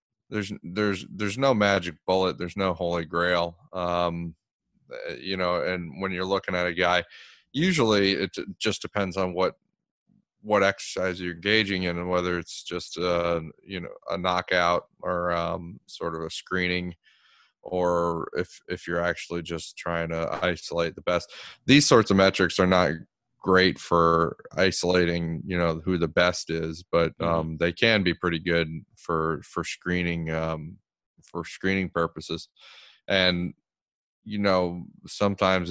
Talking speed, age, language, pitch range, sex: 150 wpm, 20-39, English, 85-95 Hz, male